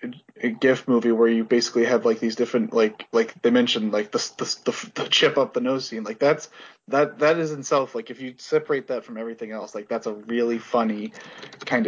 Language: English